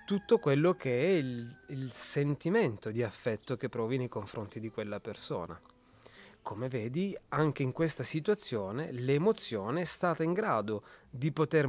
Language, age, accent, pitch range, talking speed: Italian, 30-49, native, 115-155 Hz, 150 wpm